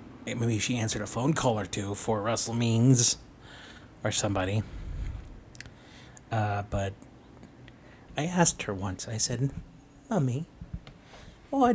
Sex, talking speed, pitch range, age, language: male, 115 wpm, 100-125 Hz, 30-49, English